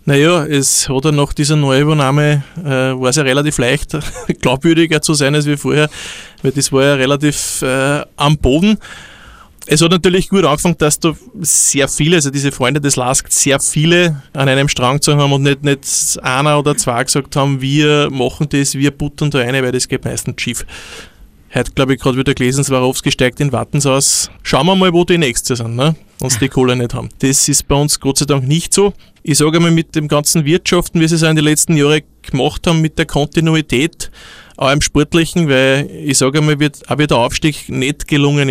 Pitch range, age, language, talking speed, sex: 135-160 Hz, 20-39, German, 210 wpm, male